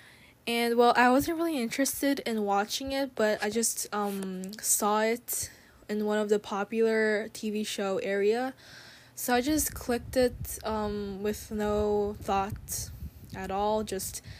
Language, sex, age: Korean, female, 10-29